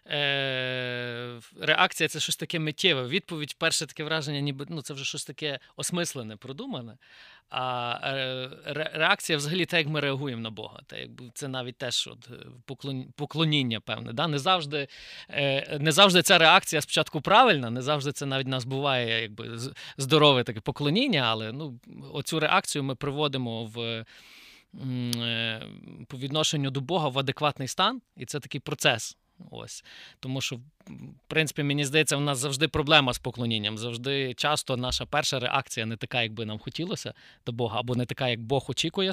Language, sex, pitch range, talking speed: Ukrainian, male, 125-160 Hz, 165 wpm